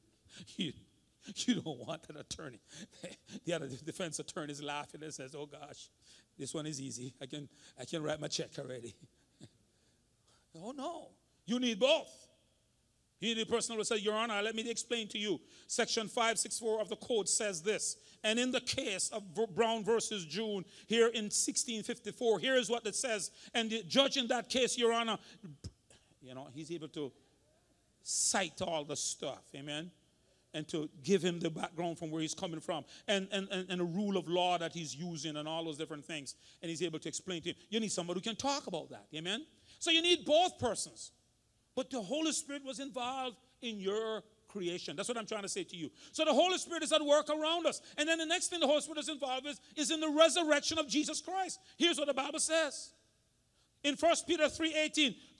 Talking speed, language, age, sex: 200 wpm, English, 40-59, male